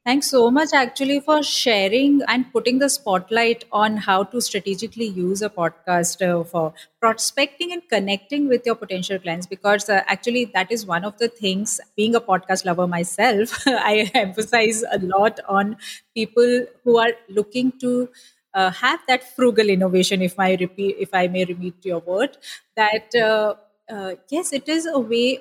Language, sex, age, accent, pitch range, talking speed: English, female, 30-49, Indian, 185-245 Hz, 170 wpm